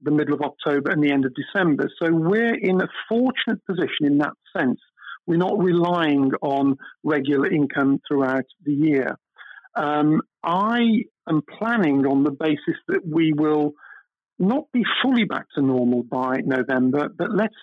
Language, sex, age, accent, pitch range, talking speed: English, male, 50-69, British, 140-175 Hz, 160 wpm